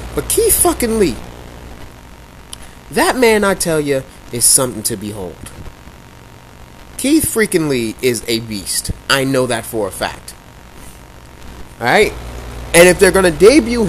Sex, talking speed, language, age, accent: male, 145 wpm, English, 20-39, American